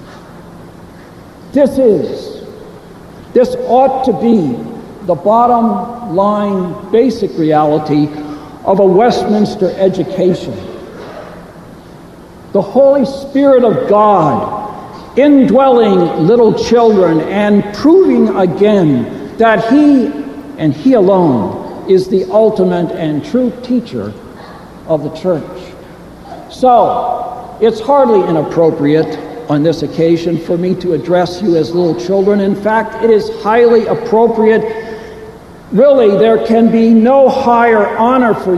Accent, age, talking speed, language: American, 60-79, 105 wpm, English